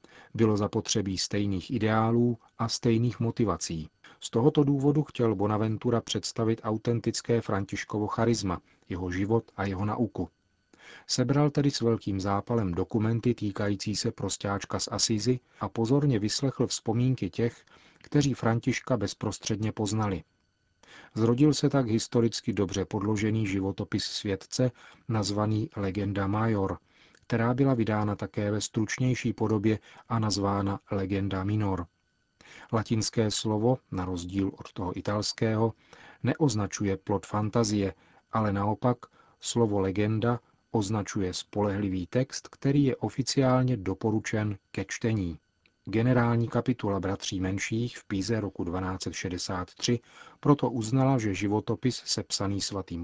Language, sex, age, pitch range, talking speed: Czech, male, 40-59, 100-120 Hz, 115 wpm